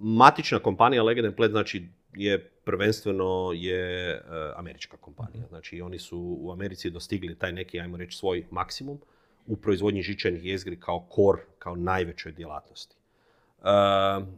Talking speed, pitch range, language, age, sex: 140 wpm, 95-120 Hz, Croatian, 40-59, male